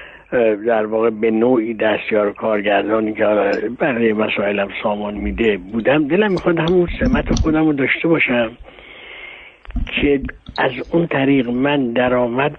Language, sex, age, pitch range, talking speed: Persian, male, 60-79, 115-150 Hz, 130 wpm